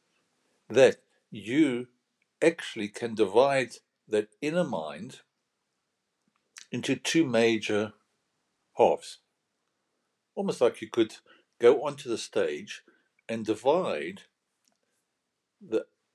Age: 60-79